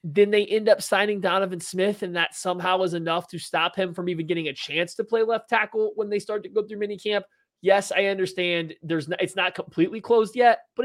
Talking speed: 230 wpm